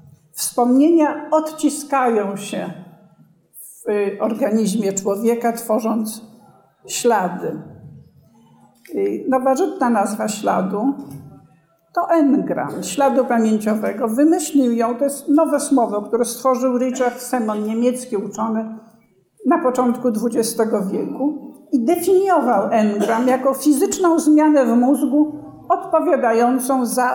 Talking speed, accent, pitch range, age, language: 90 wpm, native, 220-285 Hz, 50-69, Polish